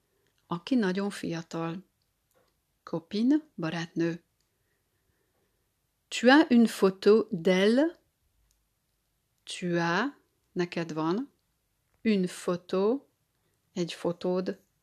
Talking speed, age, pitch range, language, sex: 75 wpm, 40-59, 170-230 Hz, Hungarian, female